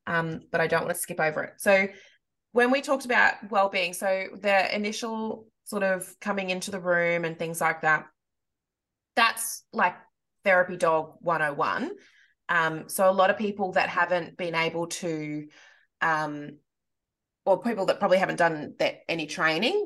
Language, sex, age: English, female, 20-39